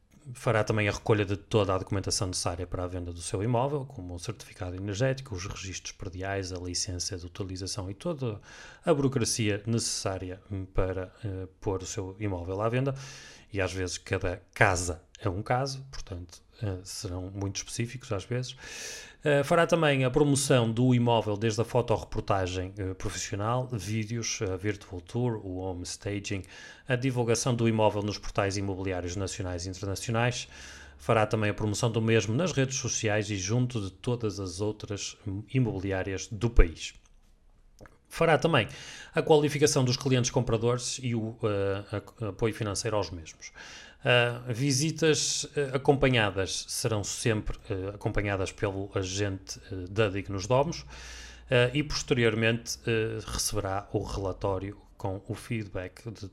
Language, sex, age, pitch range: Portuguese, male, 30-49, 95-120 Hz